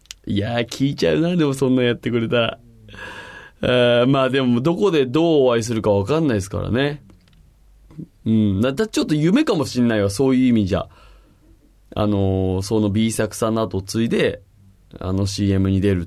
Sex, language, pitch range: male, Japanese, 95-140 Hz